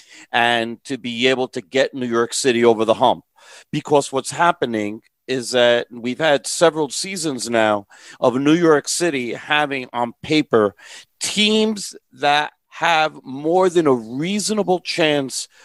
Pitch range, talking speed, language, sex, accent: 120-150 Hz, 140 wpm, English, male, American